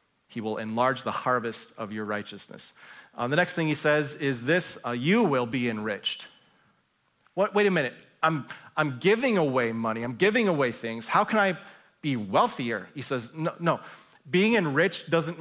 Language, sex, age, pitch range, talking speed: English, male, 30-49, 120-165 Hz, 175 wpm